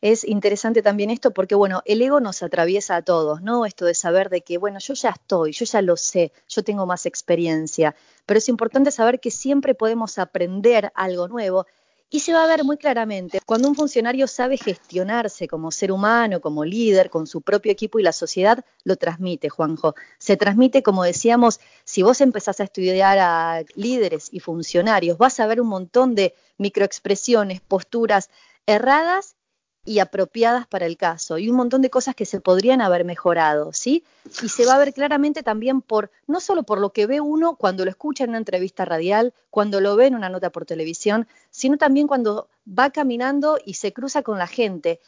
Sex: female